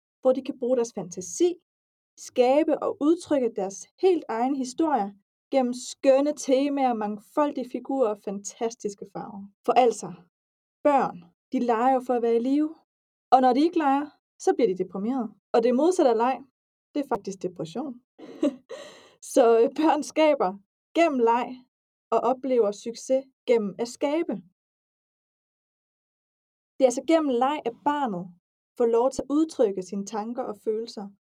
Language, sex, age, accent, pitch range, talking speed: Danish, female, 20-39, native, 215-280 Hz, 145 wpm